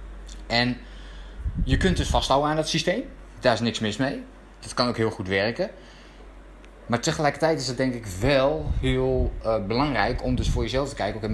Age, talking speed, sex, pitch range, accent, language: 20-39, 185 wpm, male, 100-130 Hz, Dutch, Dutch